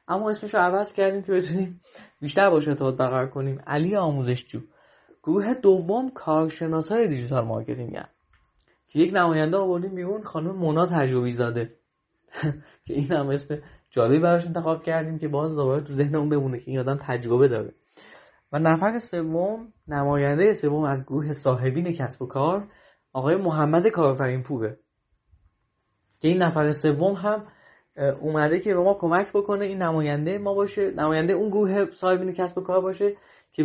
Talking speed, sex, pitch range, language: 155 wpm, male, 140-185 Hz, Persian